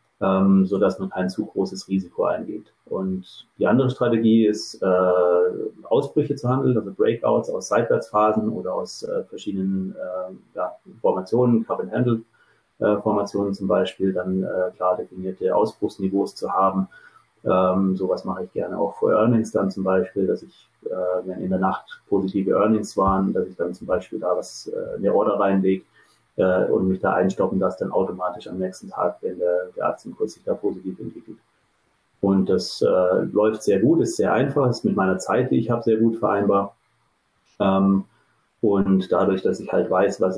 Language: German